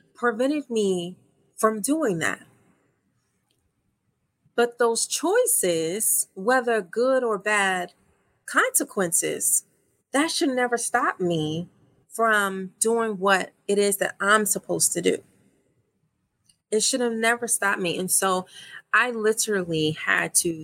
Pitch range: 180-235 Hz